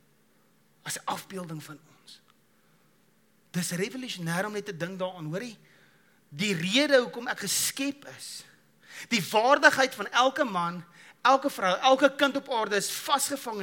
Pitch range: 170-265 Hz